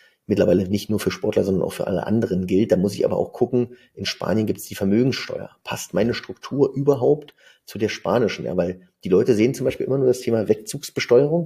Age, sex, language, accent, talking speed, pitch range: 30-49, male, German, German, 220 wpm, 100-140 Hz